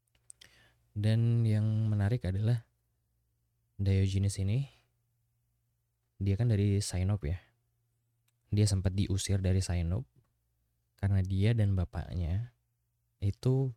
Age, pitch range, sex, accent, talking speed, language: 20-39, 90-115 Hz, male, native, 90 wpm, Indonesian